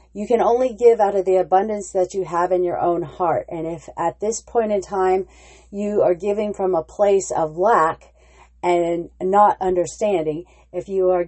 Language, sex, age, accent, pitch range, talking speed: English, female, 40-59, American, 175-200 Hz, 190 wpm